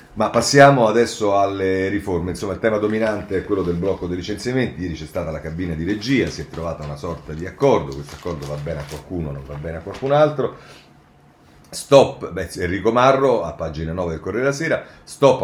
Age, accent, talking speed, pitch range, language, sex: 40-59, native, 205 wpm, 85-115 Hz, Italian, male